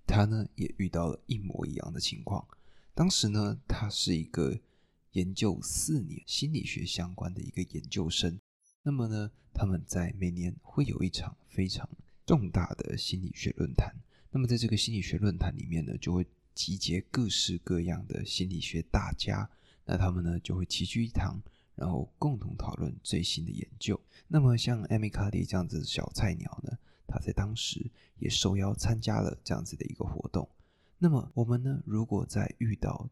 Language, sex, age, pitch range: Chinese, male, 20-39, 90-120 Hz